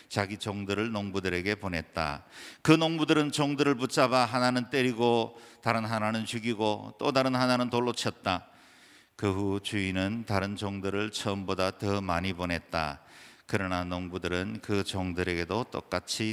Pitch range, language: 95-130 Hz, Korean